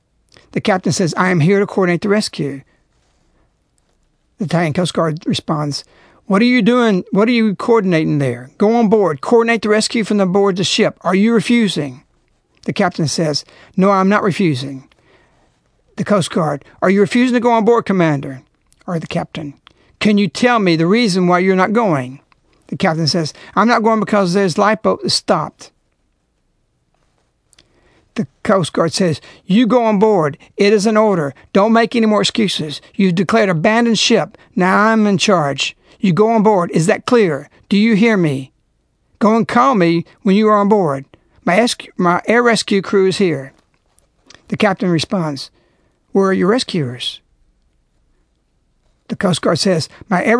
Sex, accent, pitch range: male, American, 155-215 Hz